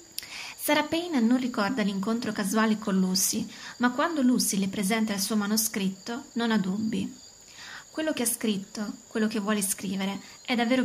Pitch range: 210-245 Hz